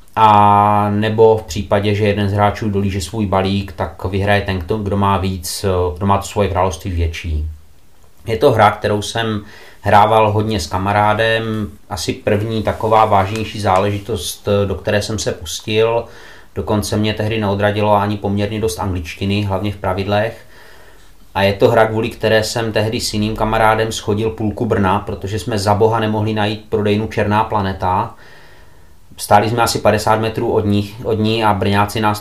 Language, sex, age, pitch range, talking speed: Czech, male, 30-49, 95-110 Hz, 160 wpm